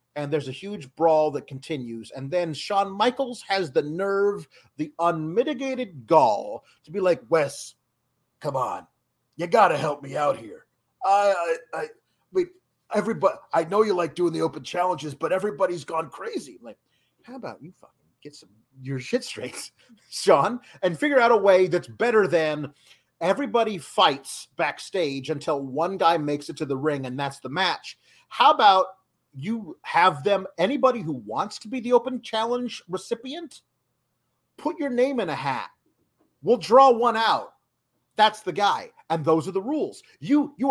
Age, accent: 30-49, American